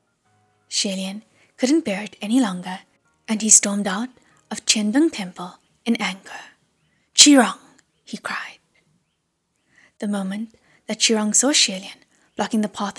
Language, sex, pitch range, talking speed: English, female, 200-235 Hz, 125 wpm